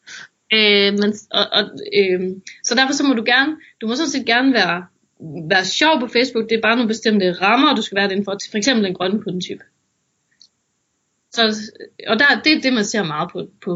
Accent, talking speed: native, 205 wpm